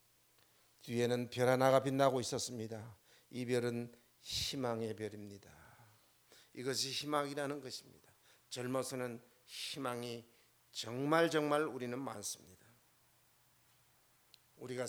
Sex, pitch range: male, 115-135 Hz